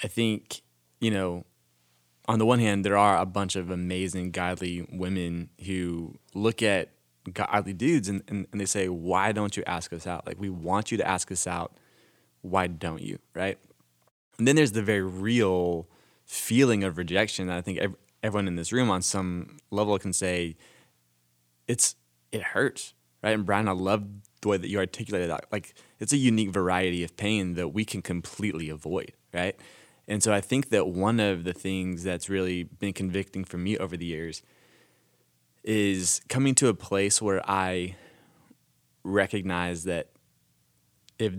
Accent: American